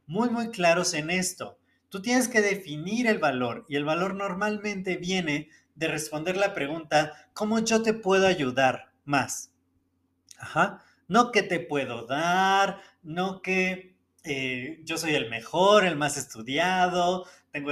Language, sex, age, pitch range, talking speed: Spanish, male, 30-49, 145-195 Hz, 145 wpm